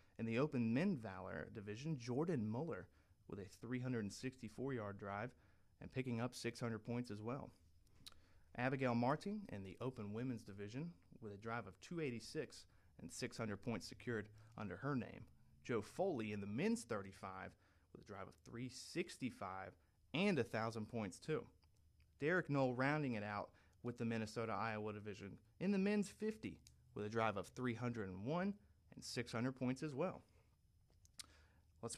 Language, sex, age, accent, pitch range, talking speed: English, male, 30-49, American, 100-135 Hz, 145 wpm